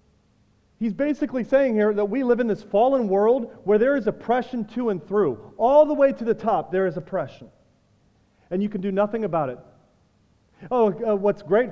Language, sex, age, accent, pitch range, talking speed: English, male, 40-59, American, 180-235 Hz, 195 wpm